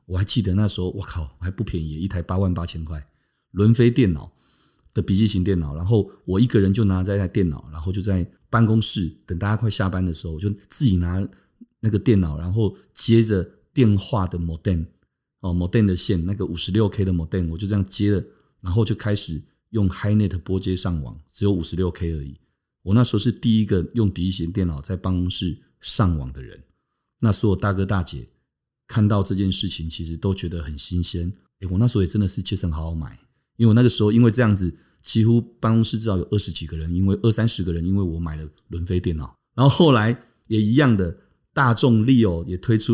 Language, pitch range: Chinese, 90-110 Hz